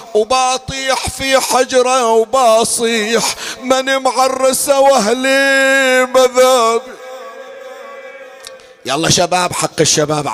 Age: 40-59